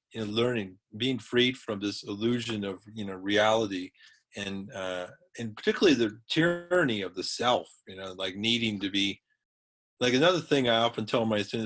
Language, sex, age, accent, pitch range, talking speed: English, male, 40-59, American, 105-145 Hz, 175 wpm